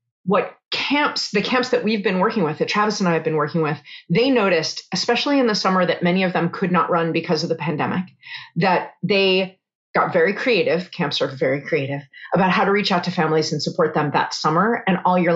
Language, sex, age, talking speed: English, female, 30-49, 225 wpm